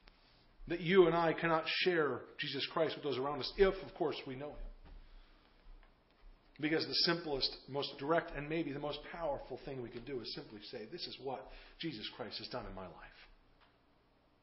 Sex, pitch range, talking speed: male, 160-240 Hz, 185 wpm